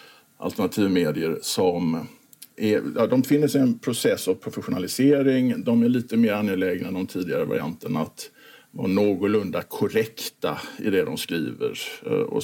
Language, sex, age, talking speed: Swedish, male, 50-69, 140 wpm